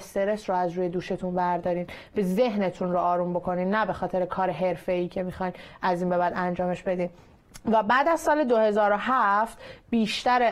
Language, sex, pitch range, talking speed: Persian, female, 180-210 Hz, 175 wpm